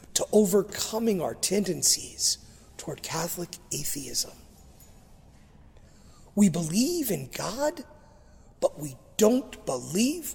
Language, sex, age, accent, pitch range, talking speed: English, male, 40-59, American, 175-220 Hz, 85 wpm